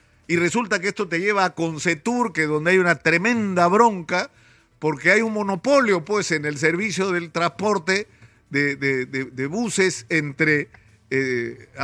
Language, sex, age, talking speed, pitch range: Spanish, male, 50-69, 155 wpm, 155-210 Hz